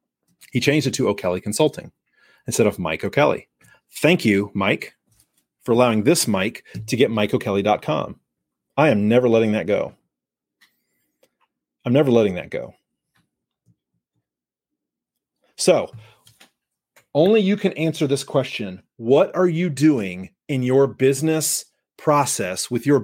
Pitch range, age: 115-155 Hz, 30-49